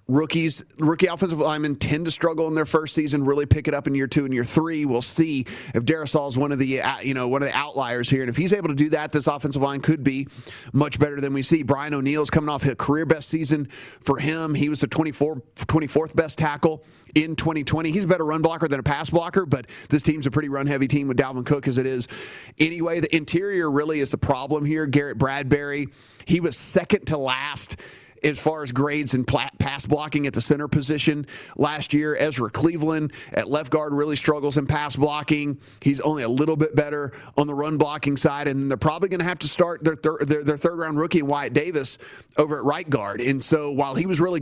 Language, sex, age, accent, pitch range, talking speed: English, male, 30-49, American, 140-155 Hz, 230 wpm